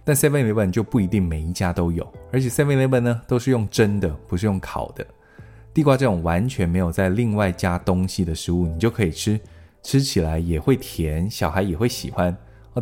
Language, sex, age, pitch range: Chinese, male, 20-39, 90-120 Hz